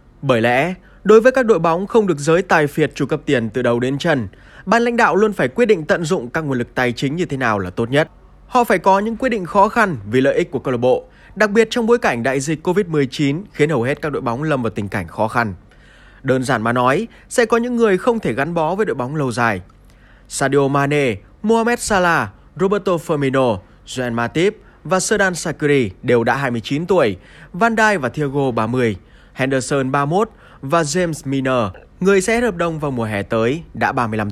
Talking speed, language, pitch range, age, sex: 220 wpm, Vietnamese, 125-200 Hz, 20-39, male